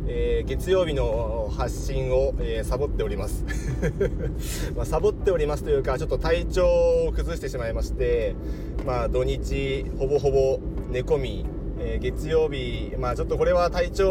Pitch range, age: 135-195 Hz, 40-59